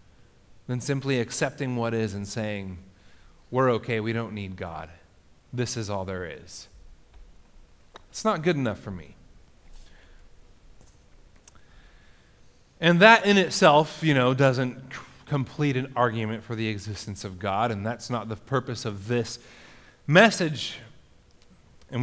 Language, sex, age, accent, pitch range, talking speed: English, male, 30-49, American, 115-160 Hz, 130 wpm